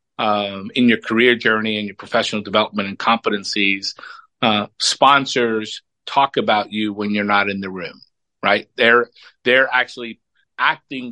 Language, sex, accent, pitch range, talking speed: English, male, American, 110-135 Hz, 145 wpm